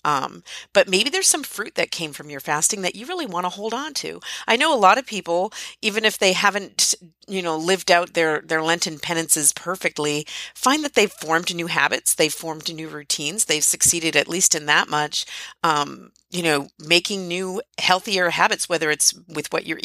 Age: 40-59